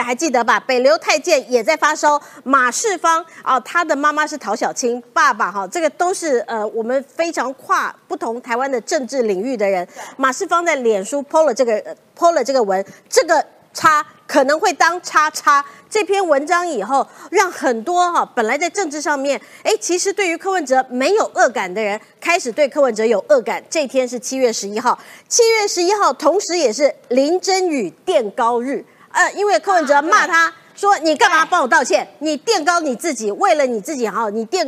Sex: female